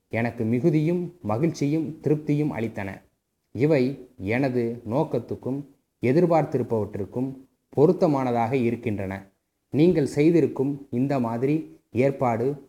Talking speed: 75 wpm